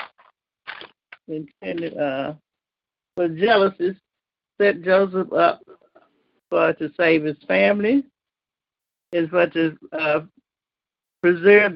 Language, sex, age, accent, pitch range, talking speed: English, male, 60-79, American, 170-210 Hz, 85 wpm